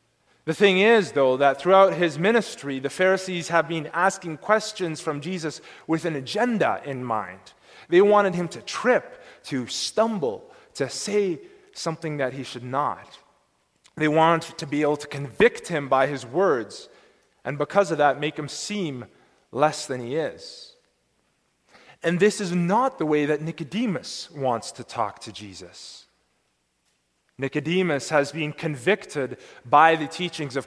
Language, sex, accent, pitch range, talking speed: English, male, American, 125-180 Hz, 155 wpm